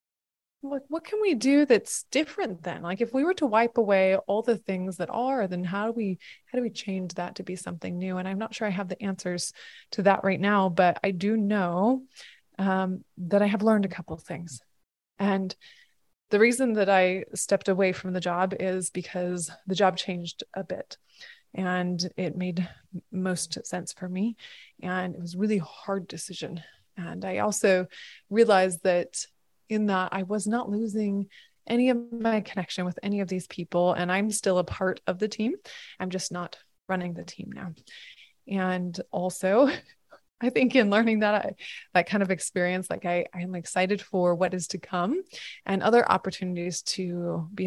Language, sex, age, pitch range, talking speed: English, female, 20-39, 180-215 Hz, 190 wpm